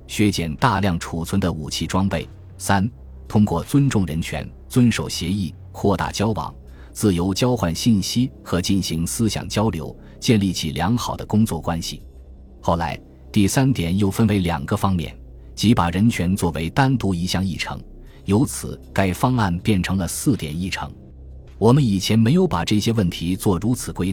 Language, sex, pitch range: Chinese, male, 80-110 Hz